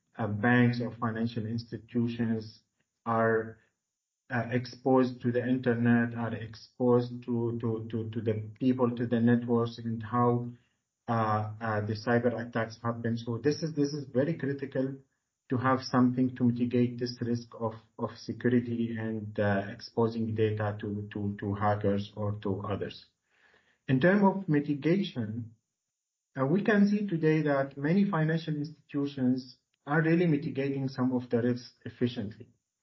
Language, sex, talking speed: English, male, 145 wpm